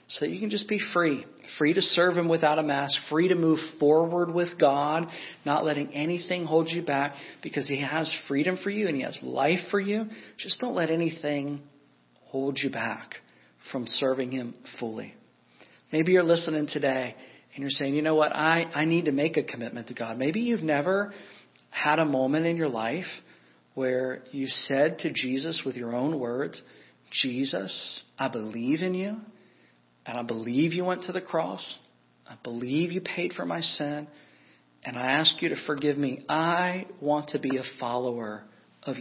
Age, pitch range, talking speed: 50-69, 125-160 Hz, 185 wpm